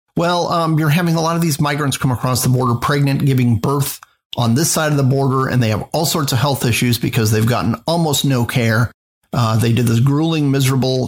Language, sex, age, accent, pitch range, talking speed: English, male, 40-59, American, 125-155 Hz, 225 wpm